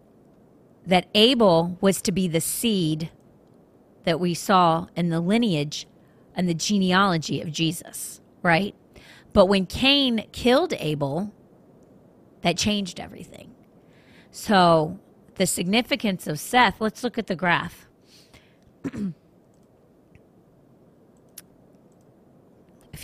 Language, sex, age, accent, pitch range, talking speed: English, female, 30-49, American, 175-215 Hz, 100 wpm